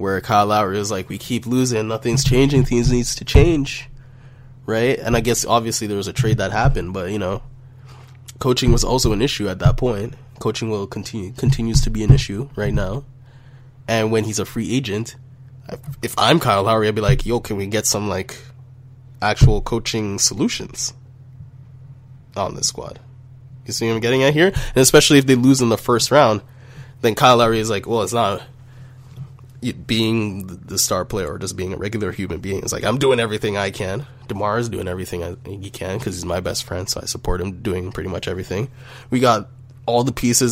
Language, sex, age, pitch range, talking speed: English, male, 20-39, 110-130 Hz, 205 wpm